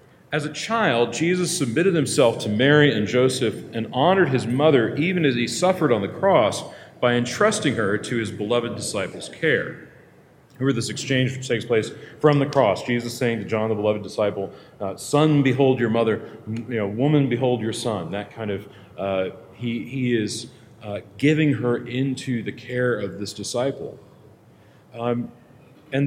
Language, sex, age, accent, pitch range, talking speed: English, male, 40-59, American, 110-145 Hz, 175 wpm